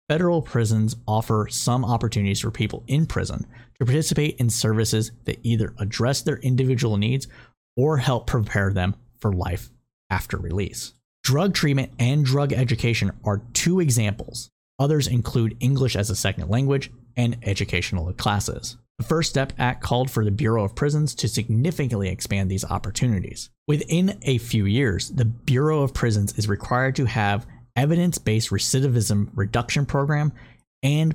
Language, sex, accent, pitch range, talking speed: English, male, American, 105-135 Hz, 150 wpm